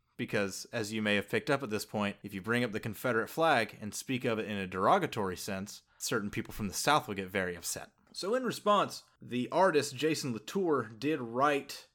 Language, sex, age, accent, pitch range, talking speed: English, male, 30-49, American, 110-150 Hz, 215 wpm